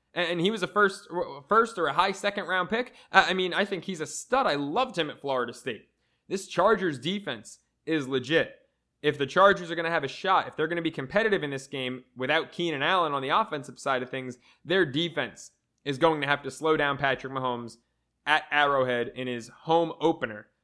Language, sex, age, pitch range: English, male, 20-39, 140-185 Hz